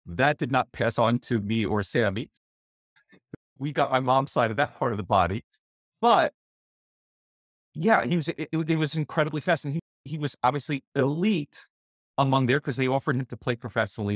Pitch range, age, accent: 95-145 Hz, 30-49, American